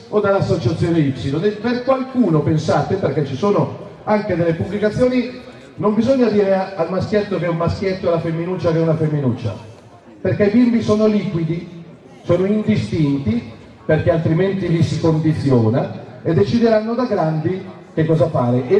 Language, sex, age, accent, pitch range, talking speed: Italian, male, 40-59, native, 145-200 Hz, 155 wpm